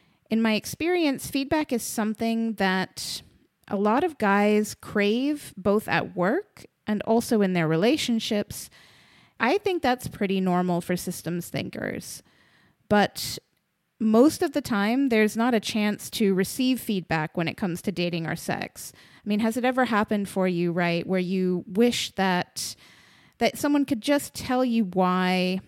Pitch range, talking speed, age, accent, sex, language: 180-235 Hz, 155 wpm, 30-49, American, female, English